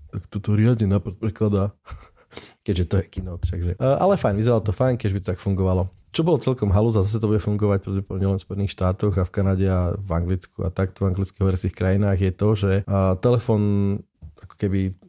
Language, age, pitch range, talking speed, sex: Slovak, 20-39, 95-110 Hz, 185 wpm, male